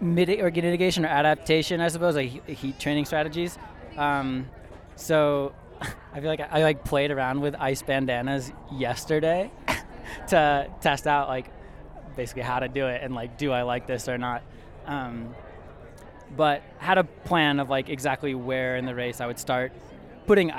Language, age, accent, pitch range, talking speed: English, 20-39, American, 125-150 Hz, 165 wpm